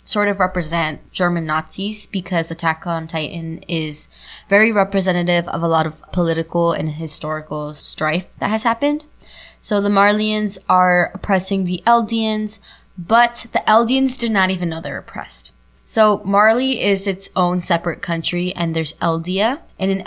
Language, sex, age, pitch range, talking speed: English, female, 20-39, 165-195 Hz, 155 wpm